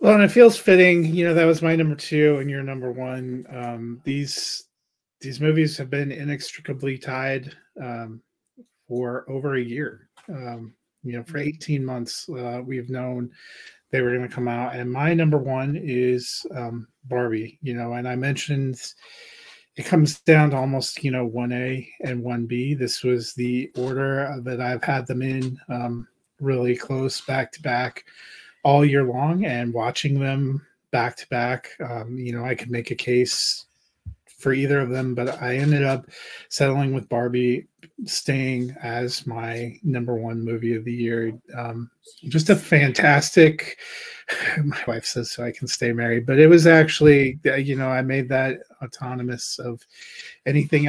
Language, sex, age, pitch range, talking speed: English, male, 30-49, 120-145 Hz, 165 wpm